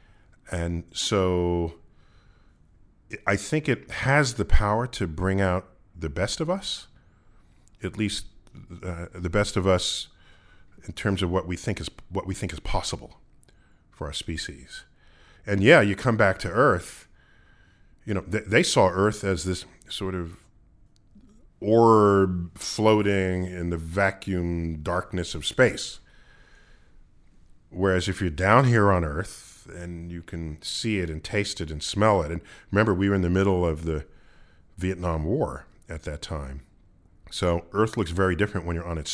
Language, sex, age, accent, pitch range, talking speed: English, male, 40-59, American, 80-100 Hz, 160 wpm